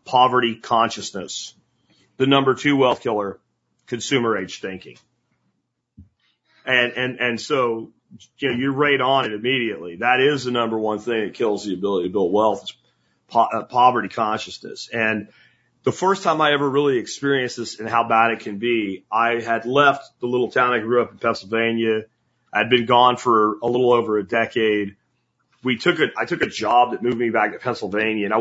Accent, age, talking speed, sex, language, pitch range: American, 40-59, 180 wpm, male, English, 110-130 Hz